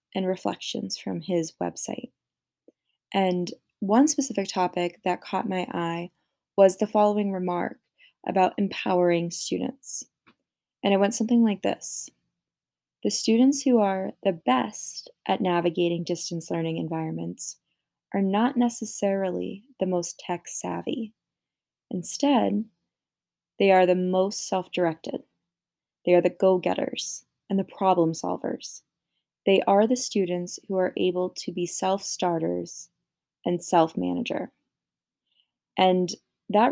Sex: female